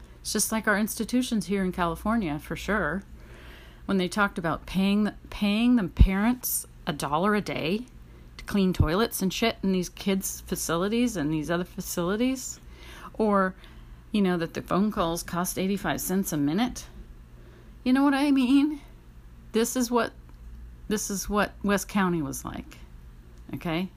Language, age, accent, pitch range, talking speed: English, 40-59, American, 165-215 Hz, 160 wpm